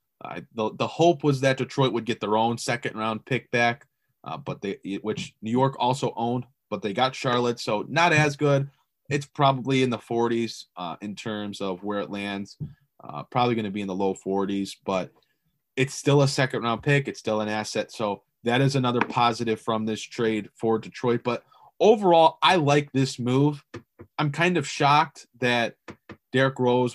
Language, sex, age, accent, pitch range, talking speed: English, male, 20-39, American, 110-140 Hz, 190 wpm